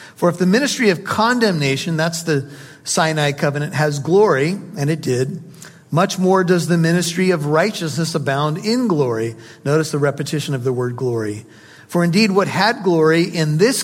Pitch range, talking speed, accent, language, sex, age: 150-180 Hz, 170 wpm, American, English, male, 50-69